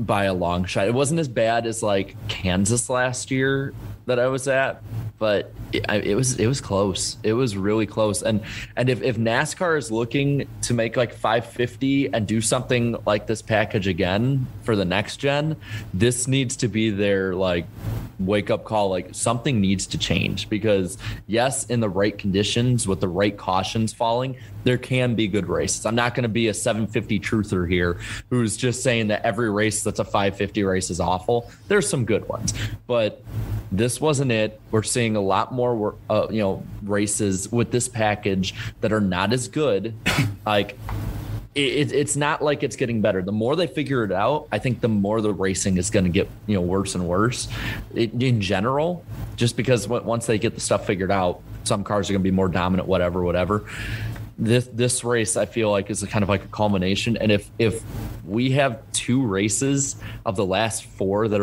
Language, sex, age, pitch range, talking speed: English, male, 20-39, 100-120 Hz, 195 wpm